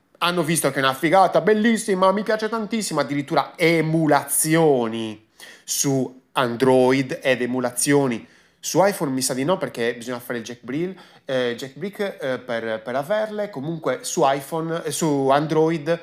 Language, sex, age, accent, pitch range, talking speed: Italian, male, 30-49, native, 125-185 Hz, 155 wpm